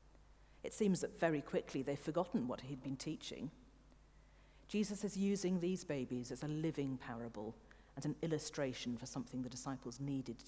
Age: 50-69